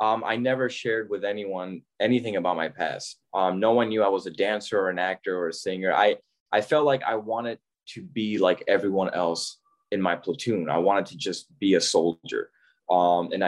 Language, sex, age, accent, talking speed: English, male, 20-39, American, 210 wpm